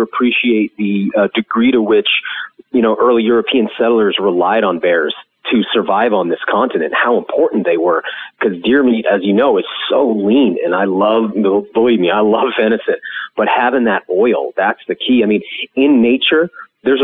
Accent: American